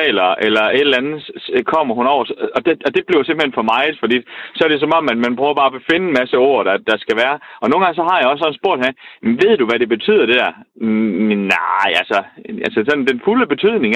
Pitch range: 115-165 Hz